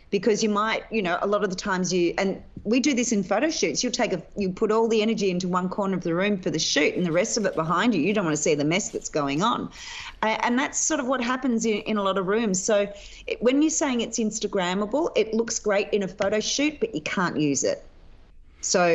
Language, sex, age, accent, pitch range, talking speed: English, female, 40-59, Australian, 155-210 Hz, 265 wpm